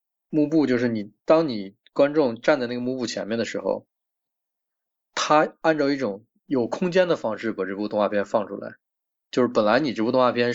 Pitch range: 105-150 Hz